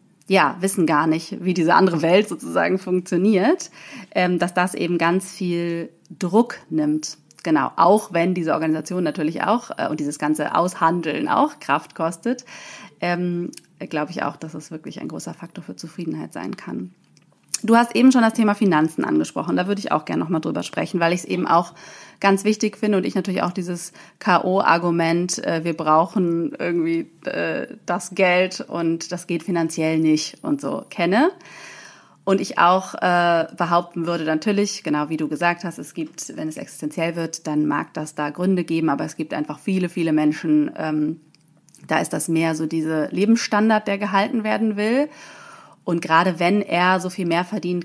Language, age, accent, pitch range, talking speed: German, 30-49, German, 165-205 Hz, 175 wpm